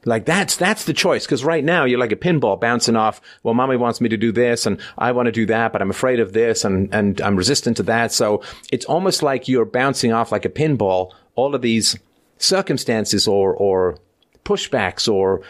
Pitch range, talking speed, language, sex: 105-135 Hz, 215 wpm, English, male